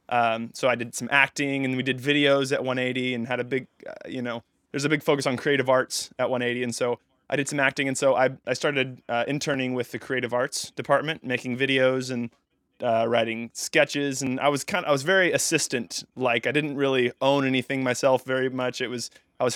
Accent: American